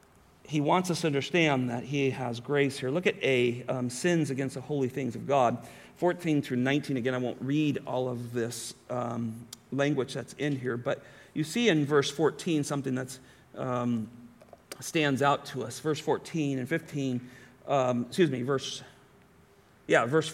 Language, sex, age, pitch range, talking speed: English, male, 40-59, 125-155 Hz, 175 wpm